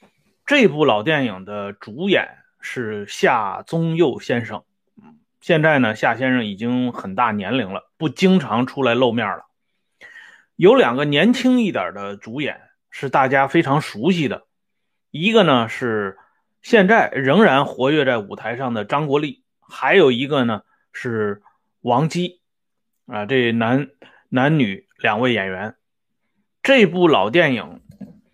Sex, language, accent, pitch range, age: male, Swedish, Chinese, 125-200 Hz, 20-39